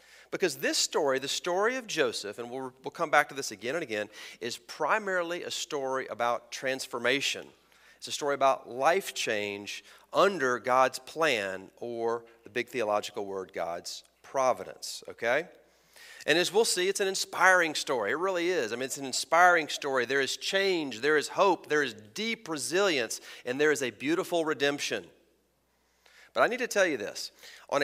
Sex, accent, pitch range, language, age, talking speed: male, American, 125-185 Hz, English, 40-59, 175 wpm